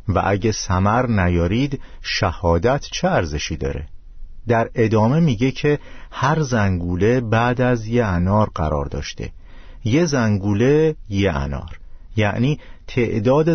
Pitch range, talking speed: 90-120 Hz, 115 wpm